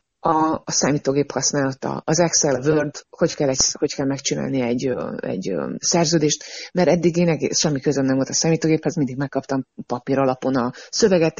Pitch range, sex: 145-200 Hz, female